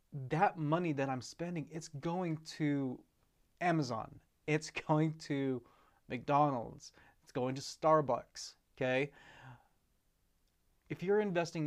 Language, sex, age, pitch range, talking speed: English, male, 30-49, 125-155 Hz, 110 wpm